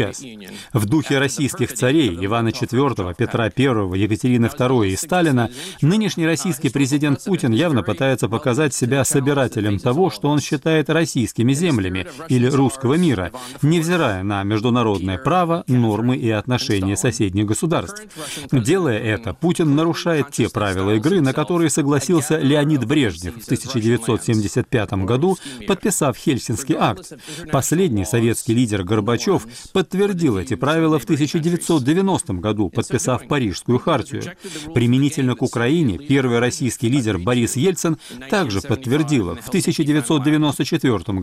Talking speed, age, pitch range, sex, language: 120 wpm, 40-59, 115-160 Hz, male, Russian